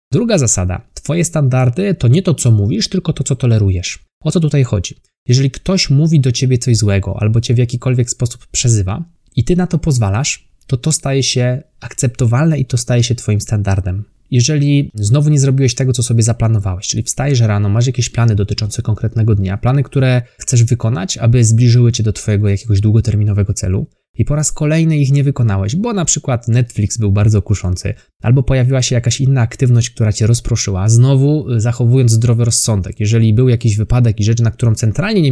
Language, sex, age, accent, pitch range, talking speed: Polish, male, 20-39, native, 110-130 Hz, 190 wpm